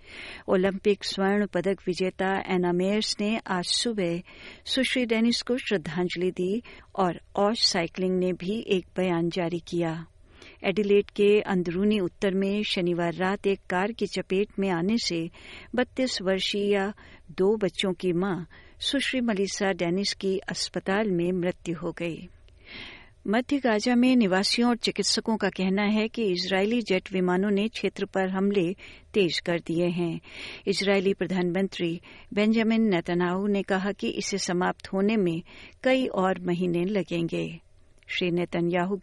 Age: 50-69